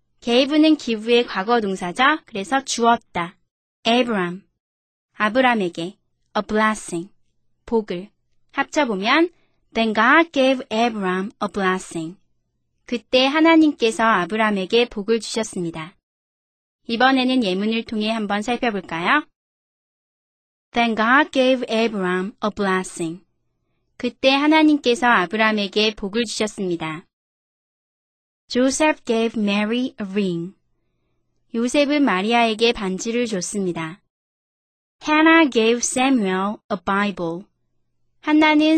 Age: 30-49